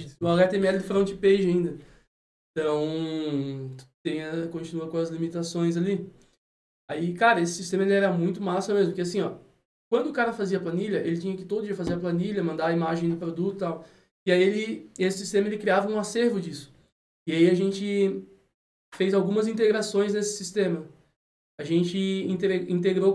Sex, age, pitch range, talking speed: male, 20-39, 175-200 Hz, 175 wpm